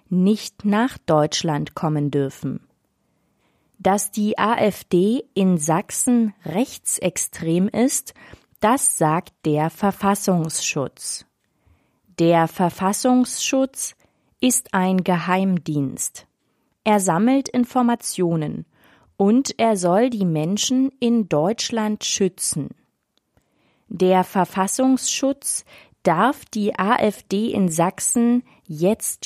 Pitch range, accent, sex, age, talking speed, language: 175-230 Hz, German, female, 30-49, 80 wpm, German